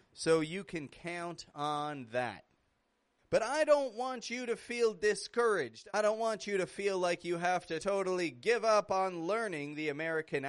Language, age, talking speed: English, 30-49, 175 wpm